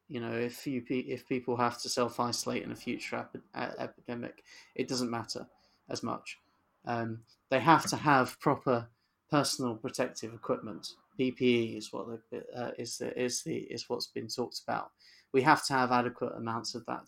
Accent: British